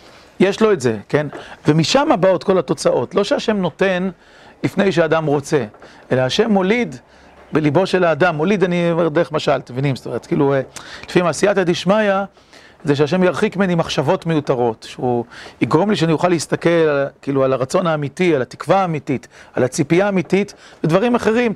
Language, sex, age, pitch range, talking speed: Hebrew, male, 40-59, 150-200 Hz, 165 wpm